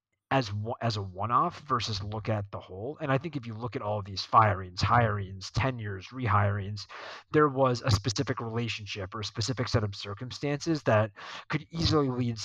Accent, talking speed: American, 180 wpm